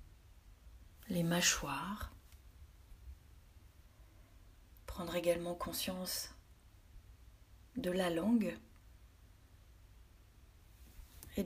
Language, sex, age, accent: French, female, 40-59, French